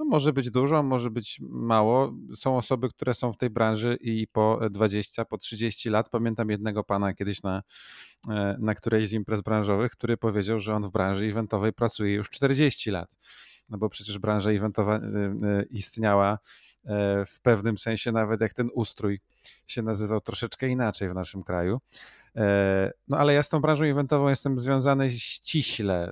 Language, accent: Polish, native